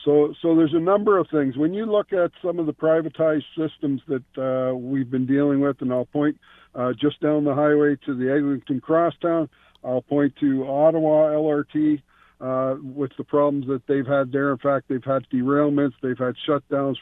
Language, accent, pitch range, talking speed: English, American, 135-160 Hz, 195 wpm